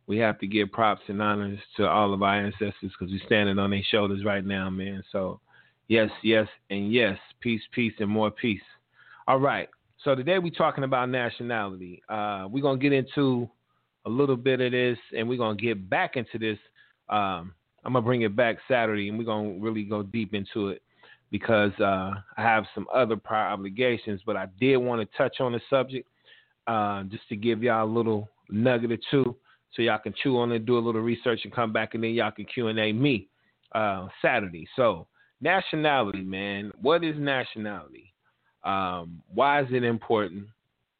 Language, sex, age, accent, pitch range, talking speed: English, male, 30-49, American, 105-125 Hz, 200 wpm